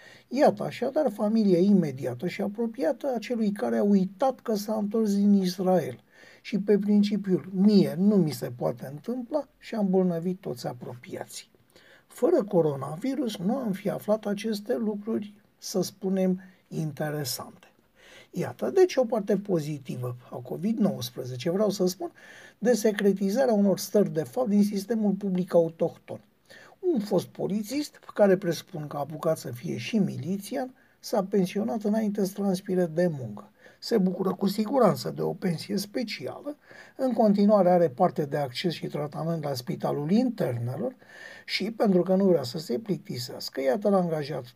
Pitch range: 170-220 Hz